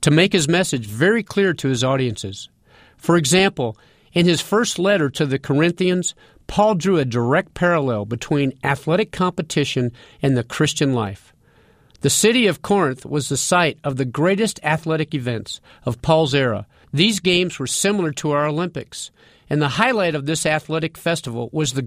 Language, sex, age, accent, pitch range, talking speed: English, male, 50-69, American, 130-180 Hz, 165 wpm